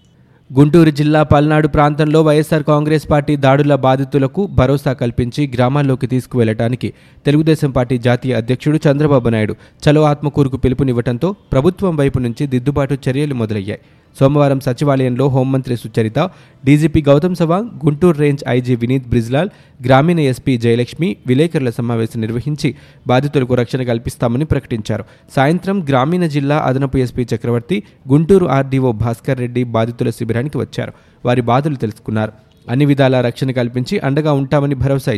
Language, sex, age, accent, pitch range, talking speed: Telugu, male, 20-39, native, 125-150 Hz, 125 wpm